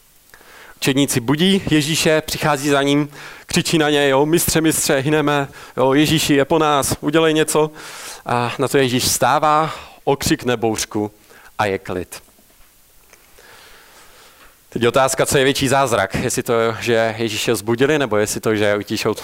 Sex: male